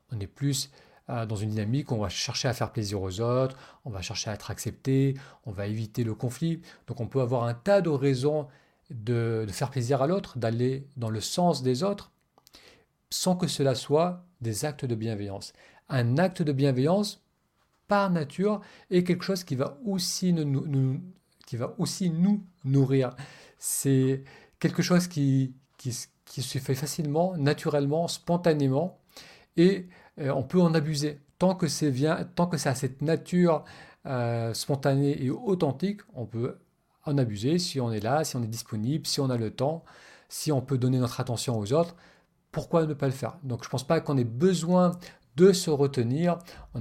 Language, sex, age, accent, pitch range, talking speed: French, male, 40-59, French, 125-165 Hz, 185 wpm